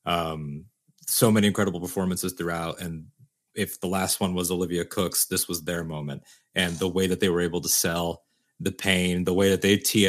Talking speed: 200 wpm